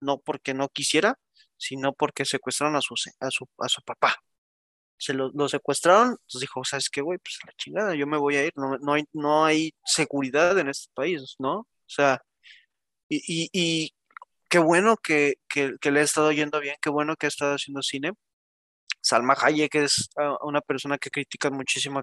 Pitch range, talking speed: 135-160 Hz, 195 wpm